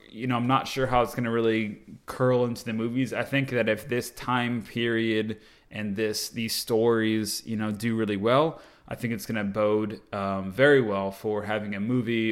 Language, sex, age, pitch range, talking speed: English, male, 20-39, 100-115 Hz, 210 wpm